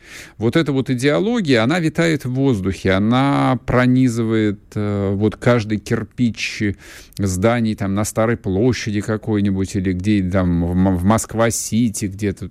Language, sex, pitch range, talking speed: Russian, male, 95-125 Hz, 115 wpm